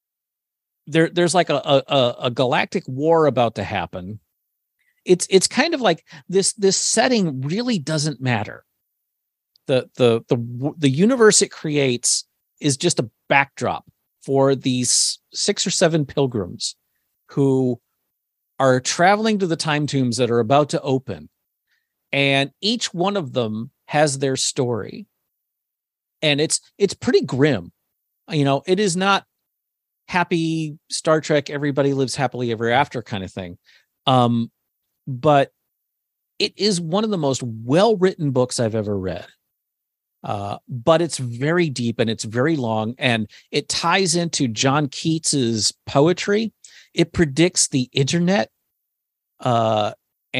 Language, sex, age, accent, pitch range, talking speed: English, male, 50-69, American, 120-170 Hz, 135 wpm